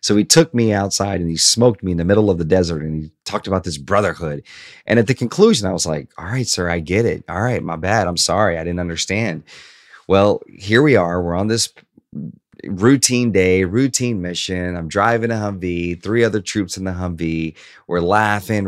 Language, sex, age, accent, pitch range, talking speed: English, male, 30-49, American, 85-105 Hz, 210 wpm